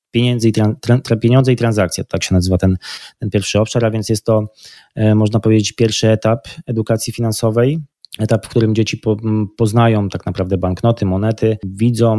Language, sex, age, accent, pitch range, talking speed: Polish, male, 20-39, native, 100-115 Hz, 155 wpm